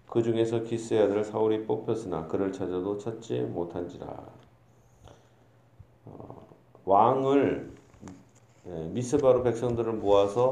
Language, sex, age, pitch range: Korean, male, 40-59, 110-135 Hz